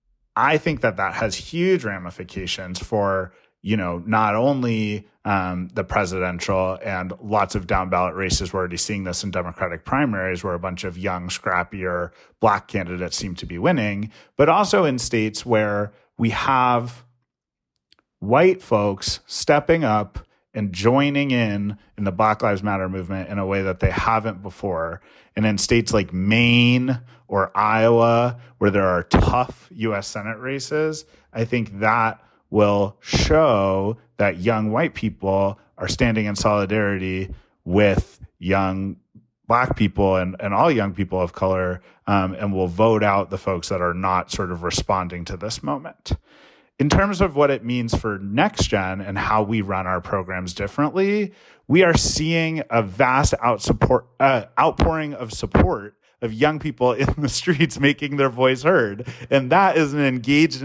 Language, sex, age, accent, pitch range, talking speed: English, male, 30-49, American, 95-125 Hz, 160 wpm